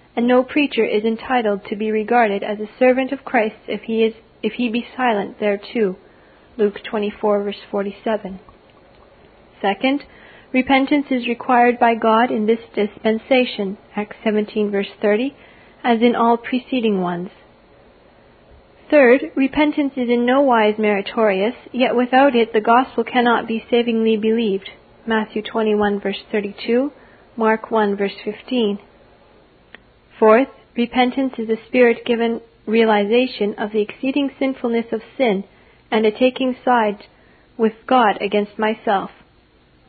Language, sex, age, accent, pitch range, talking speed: English, female, 40-59, American, 215-255 Hz, 130 wpm